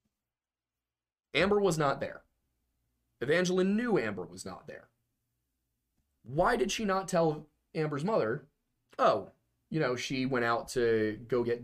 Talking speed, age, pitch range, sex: 135 wpm, 30-49, 100-150 Hz, male